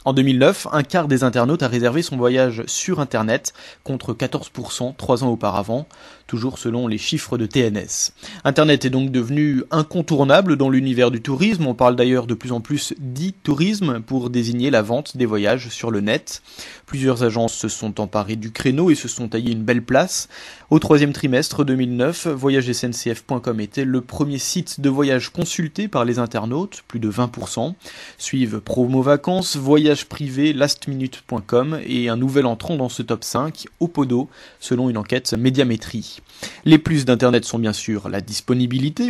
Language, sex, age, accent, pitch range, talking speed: French, male, 20-39, French, 120-145 Hz, 165 wpm